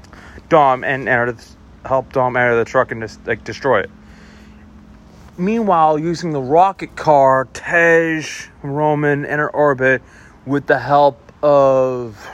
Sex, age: male, 30-49